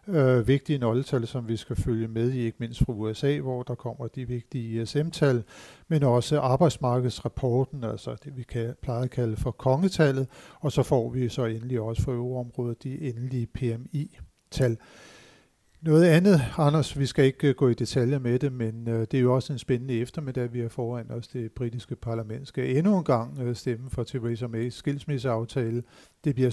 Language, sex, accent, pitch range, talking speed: Danish, male, native, 115-140 Hz, 185 wpm